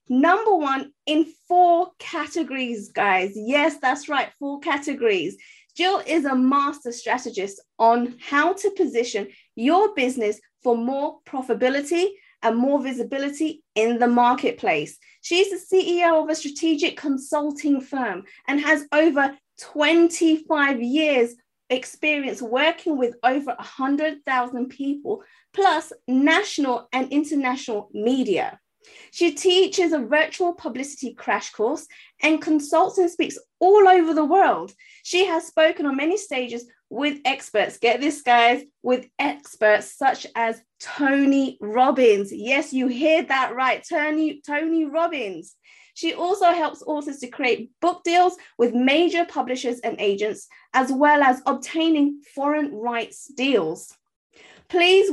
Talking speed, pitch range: 125 wpm, 250-330 Hz